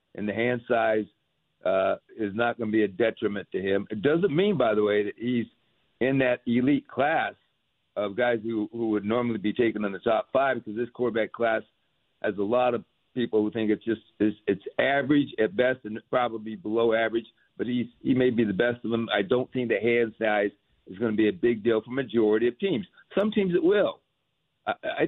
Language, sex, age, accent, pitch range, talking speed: English, male, 60-79, American, 110-155 Hz, 220 wpm